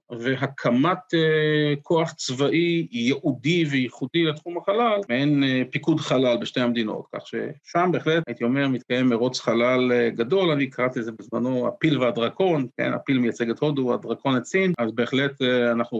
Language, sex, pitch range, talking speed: Hebrew, male, 120-155 Hz, 160 wpm